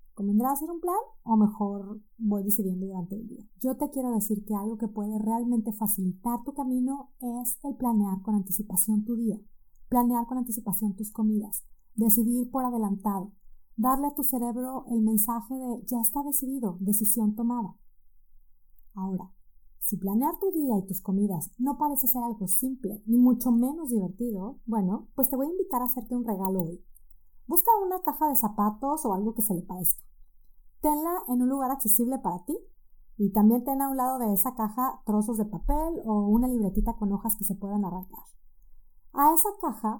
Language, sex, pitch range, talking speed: Spanish, female, 205-260 Hz, 180 wpm